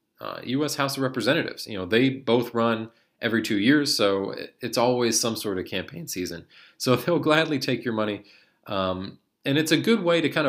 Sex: male